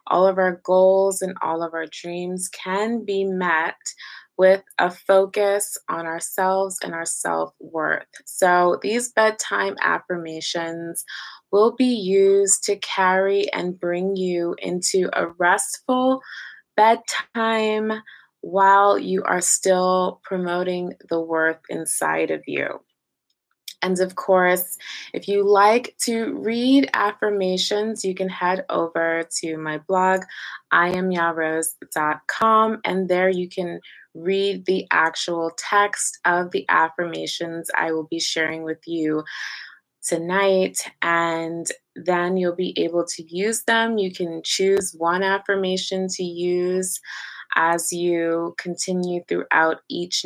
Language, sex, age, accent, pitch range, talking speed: English, female, 20-39, American, 170-195 Hz, 120 wpm